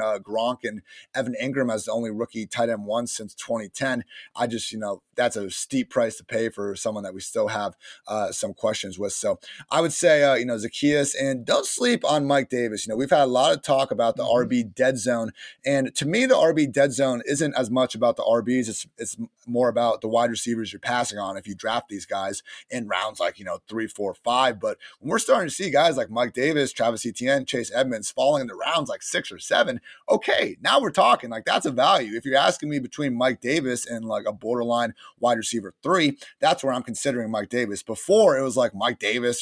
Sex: male